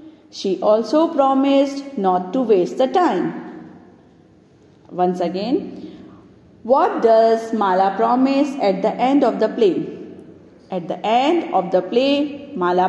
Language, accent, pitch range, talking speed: English, Indian, 210-285 Hz, 125 wpm